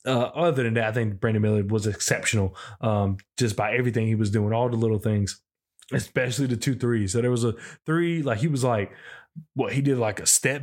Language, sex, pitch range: English, male, 120-155 Hz